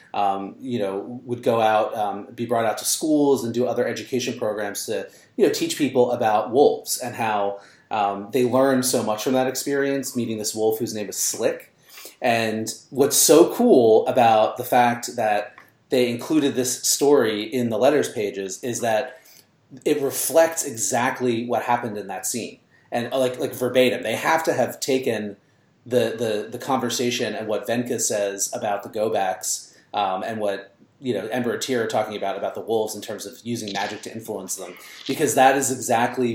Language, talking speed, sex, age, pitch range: English, 185 wpm, male, 30-49, 110-130 Hz